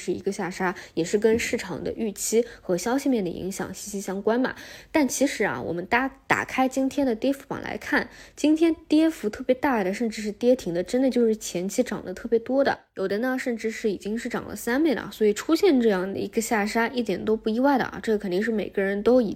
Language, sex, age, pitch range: Chinese, female, 20-39, 195-240 Hz